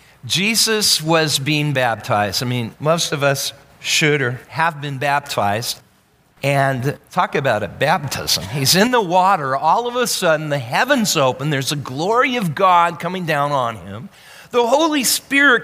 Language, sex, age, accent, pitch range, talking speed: English, male, 50-69, American, 140-195 Hz, 160 wpm